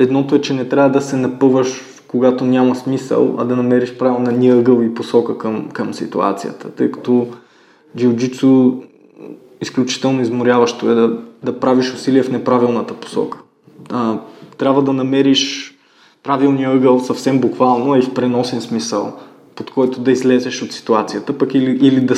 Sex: male